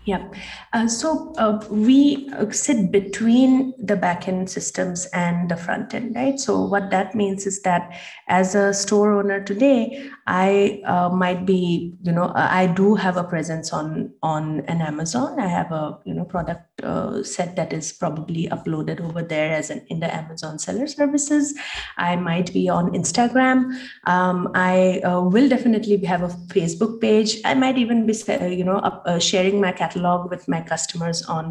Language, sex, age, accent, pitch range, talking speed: English, female, 30-49, Indian, 175-220 Hz, 175 wpm